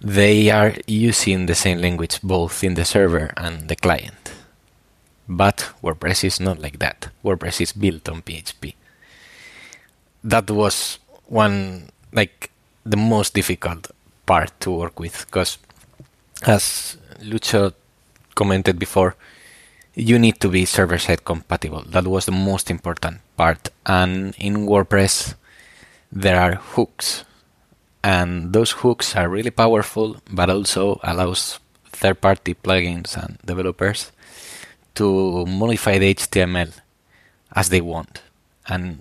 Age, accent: 20-39, Spanish